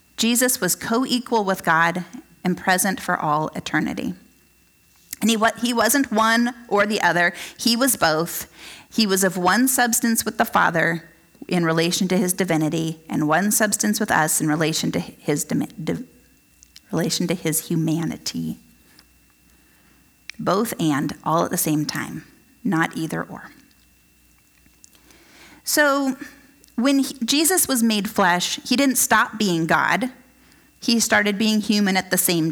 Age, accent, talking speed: 30-49, American, 135 wpm